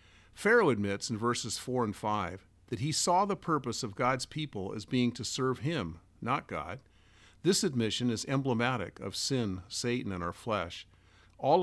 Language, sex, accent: English, male, American